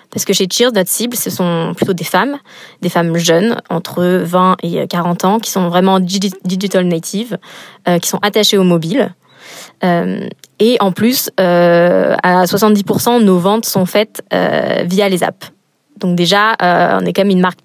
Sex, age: female, 20-39